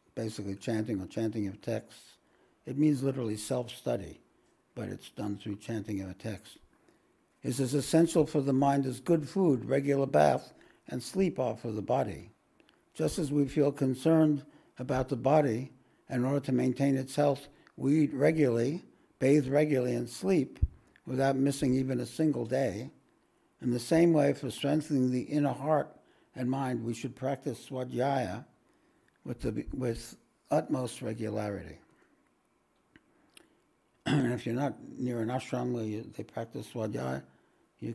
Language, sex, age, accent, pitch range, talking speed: English, male, 60-79, American, 115-145 Hz, 145 wpm